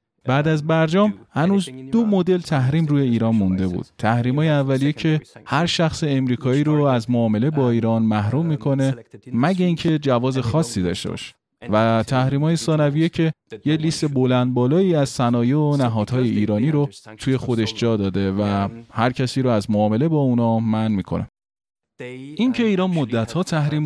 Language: Persian